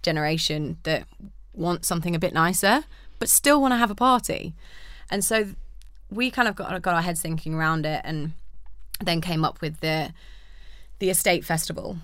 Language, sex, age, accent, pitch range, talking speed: English, female, 20-39, British, 155-180 Hz, 175 wpm